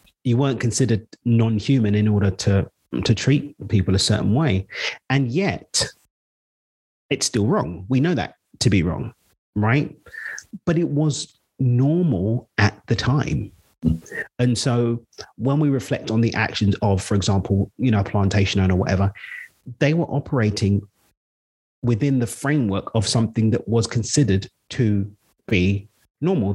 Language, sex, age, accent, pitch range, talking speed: English, male, 30-49, British, 100-130 Hz, 140 wpm